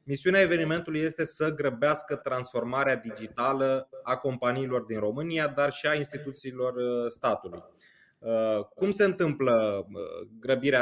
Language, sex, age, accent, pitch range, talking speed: Romanian, male, 20-39, native, 120-150 Hz, 110 wpm